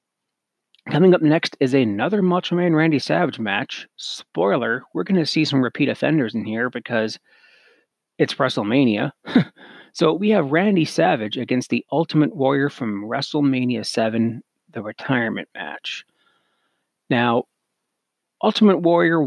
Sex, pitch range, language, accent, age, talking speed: male, 120-165 Hz, English, American, 30-49, 130 wpm